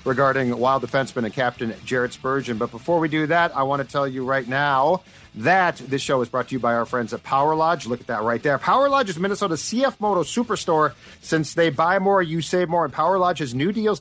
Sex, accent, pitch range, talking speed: male, American, 125-170 Hz, 245 wpm